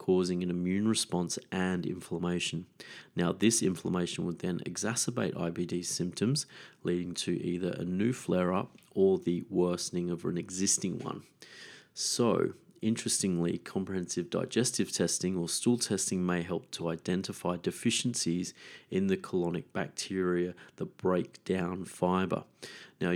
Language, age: English, 30-49